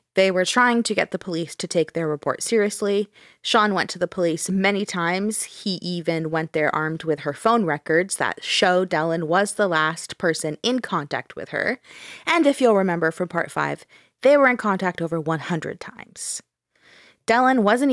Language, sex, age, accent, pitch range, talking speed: English, female, 20-39, American, 165-215 Hz, 185 wpm